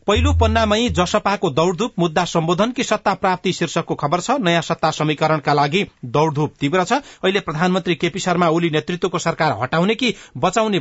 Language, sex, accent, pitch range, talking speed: English, male, Indian, 145-180 Hz, 160 wpm